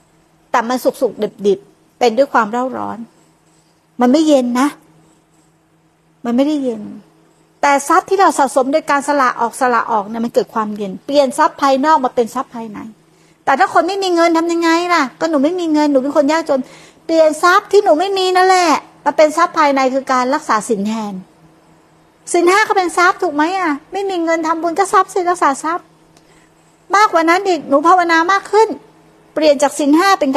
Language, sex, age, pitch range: Thai, female, 60-79, 250-330 Hz